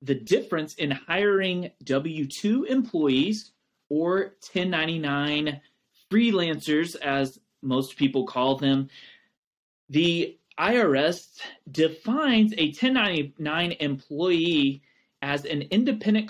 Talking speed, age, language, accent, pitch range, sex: 85 wpm, 30-49, English, American, 140-200 Hz, male